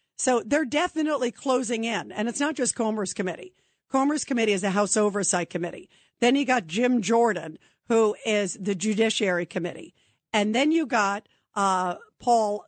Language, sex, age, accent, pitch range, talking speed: English, female, 50-69, American, 205-270 Hz, 160 wpm